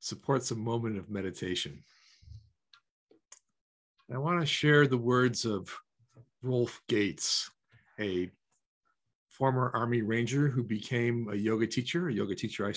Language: English